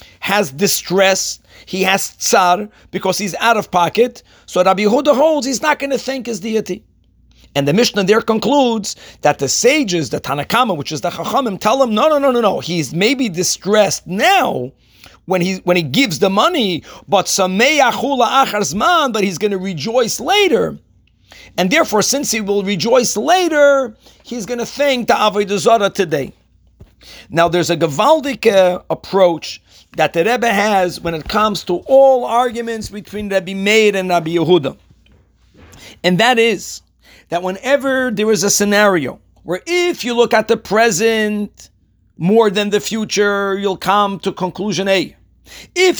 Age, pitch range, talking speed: 40-59, 180-230 Hz, 160 wpm